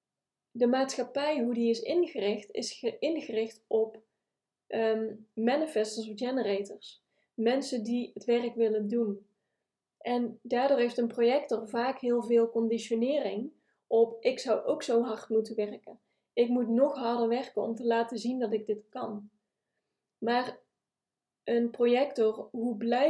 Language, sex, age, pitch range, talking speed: Dutch, female, 20-39, 225-250 Hz, 140 wpm